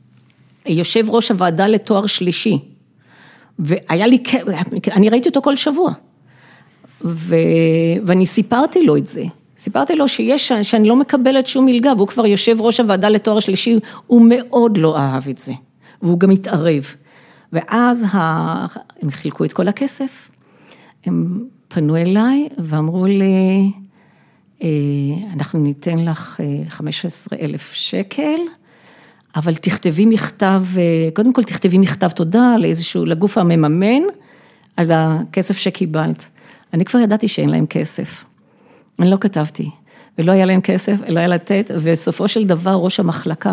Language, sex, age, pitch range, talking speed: Hebrew, female, 50-69, 165-225 Hz, 130 wpm